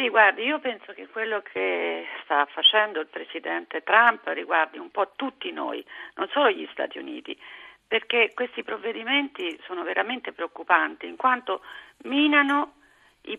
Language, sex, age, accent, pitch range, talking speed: Italian, female, 50-69, native, 200-300 Hz, 140 wpm